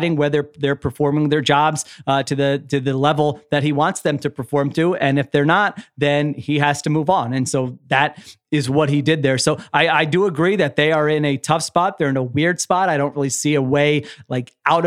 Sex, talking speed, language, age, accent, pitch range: male, 245 wpm, English, 30-49, American, 150-225 Hz